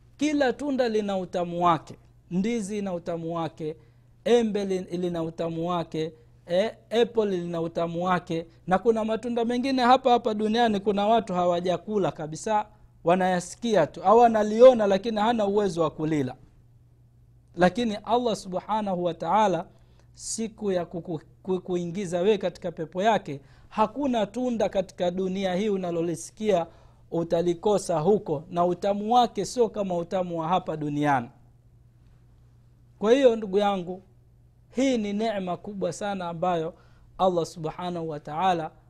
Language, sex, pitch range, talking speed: Swahili, male, 155-210 Hz, 125 wpm